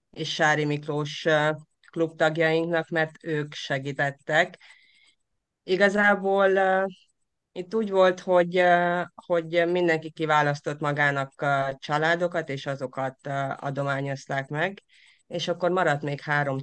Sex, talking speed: female, 95 wpm